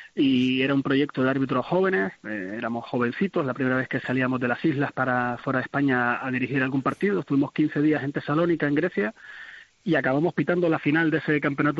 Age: 30-49